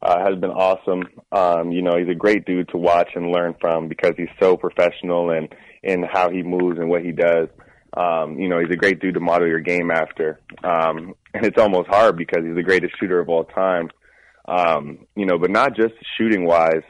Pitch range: 85-95 Hz